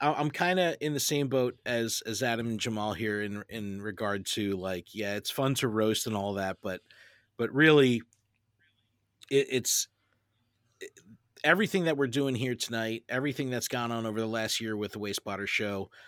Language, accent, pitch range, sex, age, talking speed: English, American, 105-130 Hz, male, 40-59, 185 wpm